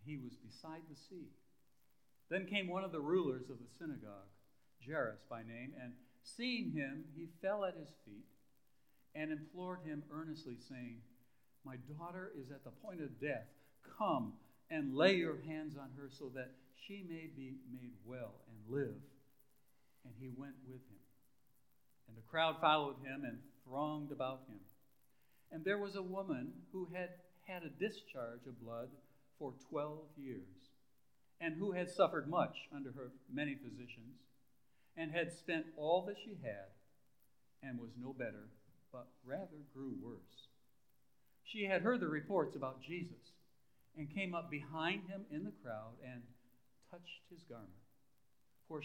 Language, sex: English, male